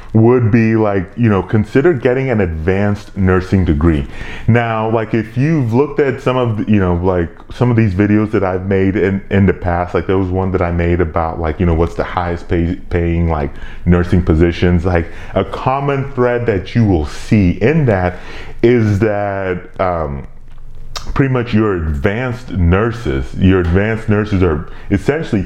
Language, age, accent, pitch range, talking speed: English, 30-49, American, 85-105 Hz, 175 wpm